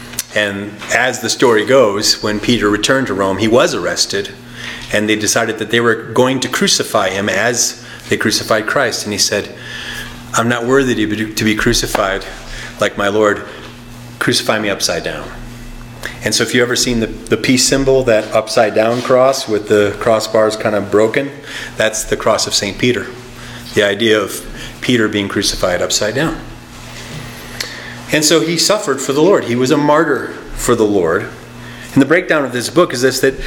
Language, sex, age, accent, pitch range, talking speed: English, male, 30-49, American, 110-130 Hz, 180 wpm